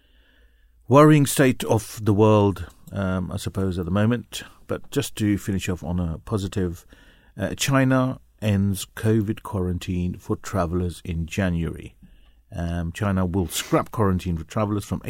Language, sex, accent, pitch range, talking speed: English, male, British, 90-110 Hz, 145 wpm